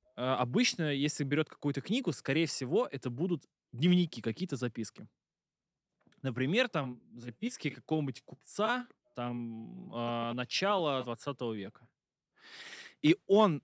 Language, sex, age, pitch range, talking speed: Russian, male, 20-39, 120-160 Hz, 105 wpm